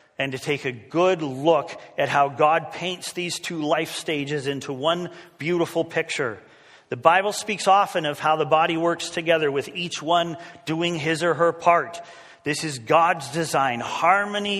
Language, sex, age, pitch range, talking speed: English, male, 40-59, 135-170 Hz, 170 wpm